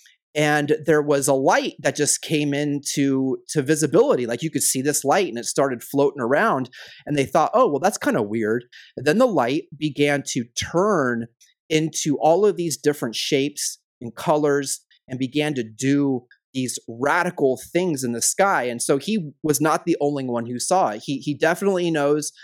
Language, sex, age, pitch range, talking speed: English, male, 30-49, 125-160 Hz, 185 wpm